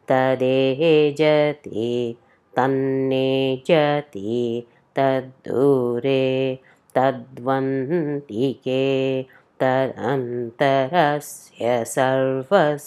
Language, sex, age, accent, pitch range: English, female, 20-39, Indian, 130-145 Hz